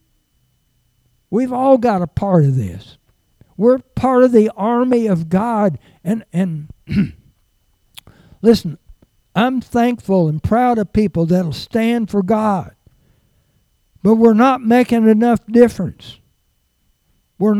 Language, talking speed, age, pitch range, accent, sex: English, 120 wpm, 60-79, 165-240 Hz, American, male